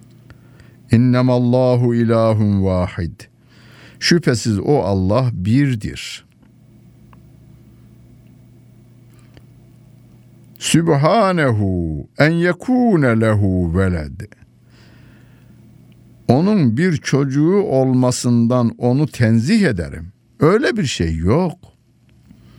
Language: Turkish